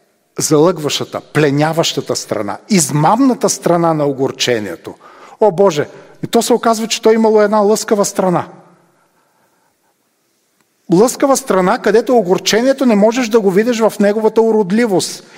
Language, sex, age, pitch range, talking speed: Bulgarian, male, 40-59, 150-220 Hz, 125 wpm